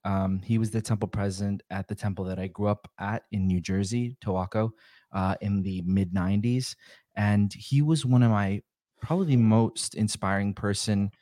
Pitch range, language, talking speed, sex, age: 100-125 Hz, English, 175 wpm, male, 20-39